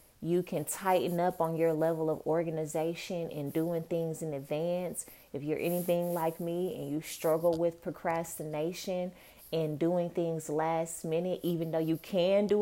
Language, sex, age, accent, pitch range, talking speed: English, female, 20-39, American, 160-195 Hz, 160 wpm